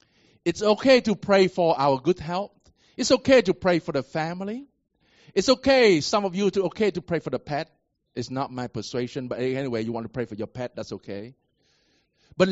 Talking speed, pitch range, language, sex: 205 wpm, 115-175 Hz, English, male